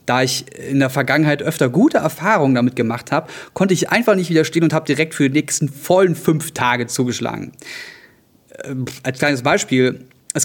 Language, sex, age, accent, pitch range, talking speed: German, male, 30-49, German, 135-180 Hz, 180 wpm